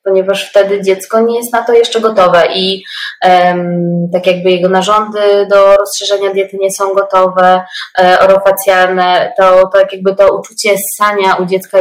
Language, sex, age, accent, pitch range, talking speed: Polish, female, 20-39, native, 185-210 Hz, 160 wpm